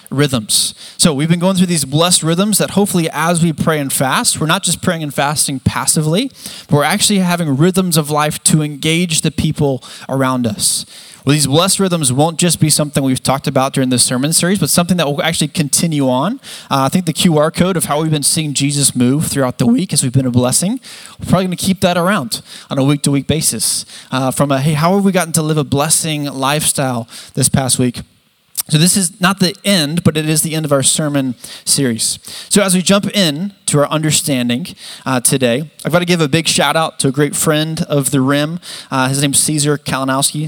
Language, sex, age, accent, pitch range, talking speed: English, male, 20-39, American, 140-175 Hz, 225 wpm